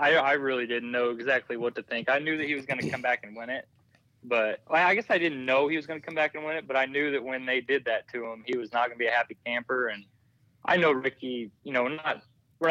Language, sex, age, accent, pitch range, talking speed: English, male, 20-39, American, 120-145 Hz, 295 wpm